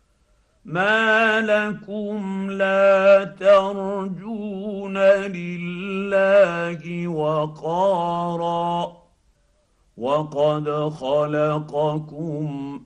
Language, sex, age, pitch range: Arabic, male, 50-69, 110-150 Hz